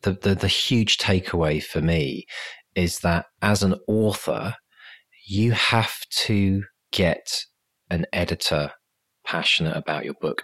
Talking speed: 125 wpm